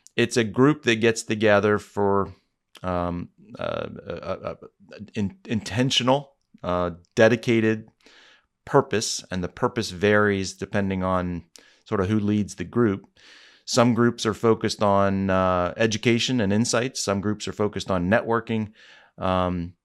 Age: 30-49